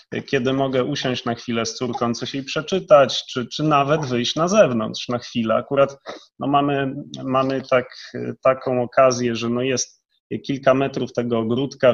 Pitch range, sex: 125-150 Hz, male